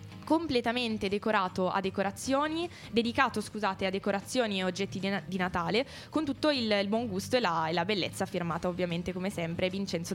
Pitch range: 185-225 Hz